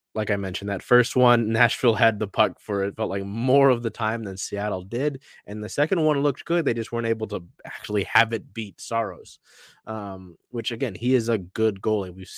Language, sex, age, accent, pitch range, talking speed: English, male, 20-39, American, 100-115 Hz, 225 wpm